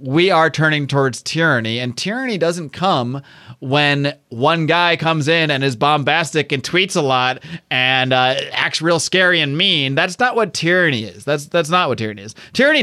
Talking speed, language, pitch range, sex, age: 185 wpm, English, 125-150 Hz, male, 30-49